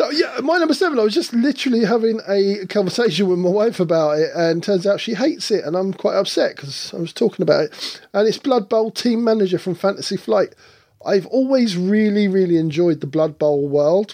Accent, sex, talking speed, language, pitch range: British, male, 220 wpm, English, 155-195 Hz